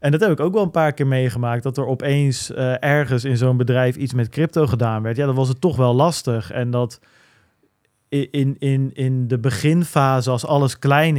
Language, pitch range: Dutch, 125-145 Hz